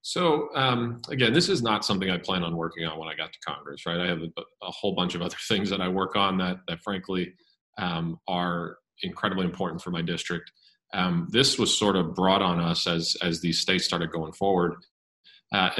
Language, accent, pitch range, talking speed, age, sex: English, American, 85-95 Hz, 215 wpm, 40-59, male